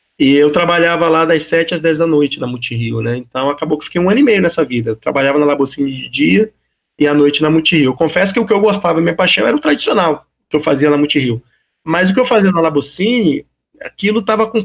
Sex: male